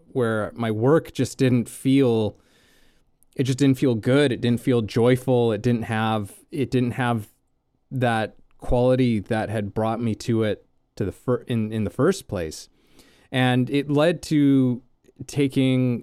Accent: American